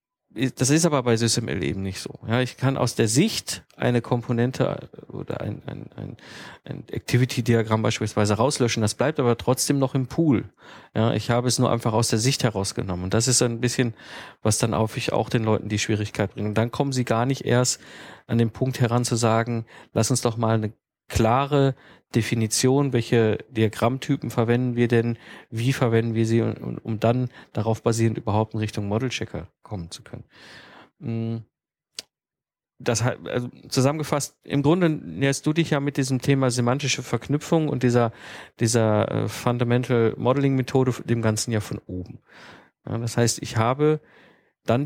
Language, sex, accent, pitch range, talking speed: German, male, German, 115-130 Hz, 160 wpm